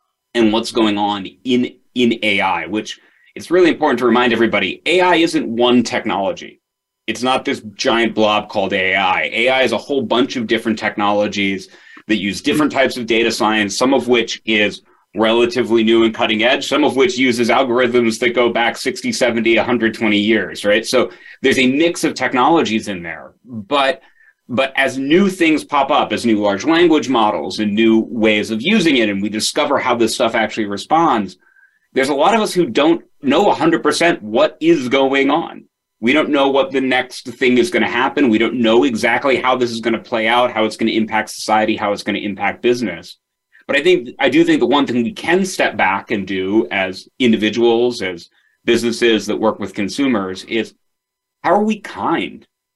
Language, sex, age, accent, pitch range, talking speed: English, male, 30-49, American, 110-135 Hz, 190 wpm